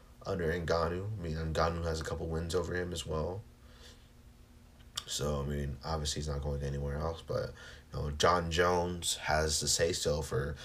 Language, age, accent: English, 30-49, American